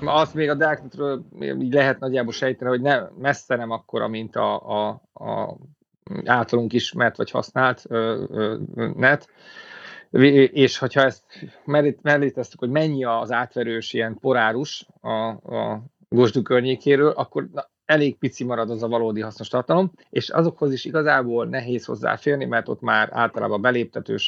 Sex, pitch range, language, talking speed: male, 115-140 Hz, Hungarian, 150 wpm